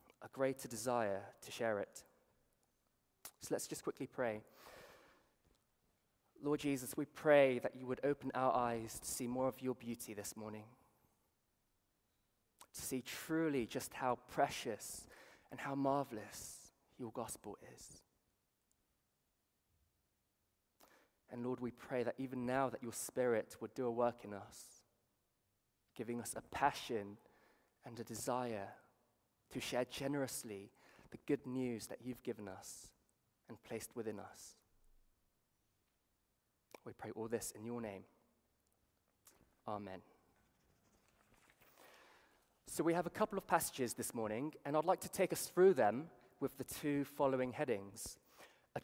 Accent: British